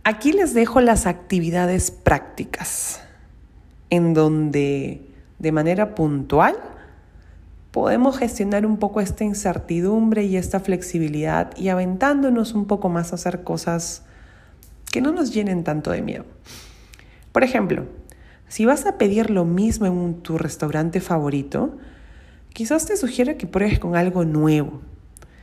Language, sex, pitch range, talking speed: Spanish, female, 160-220 Hz, 130 wpm